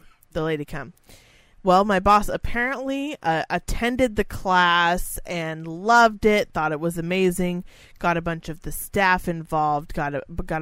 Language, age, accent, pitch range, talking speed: English, 30-49, American, 165-220 Hz, 145 wpm